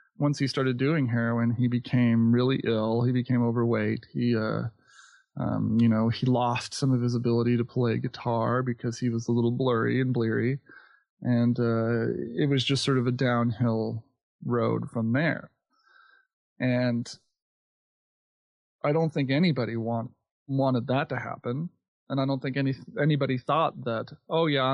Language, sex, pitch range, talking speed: English, male, 120-145 Hz, 160 wpm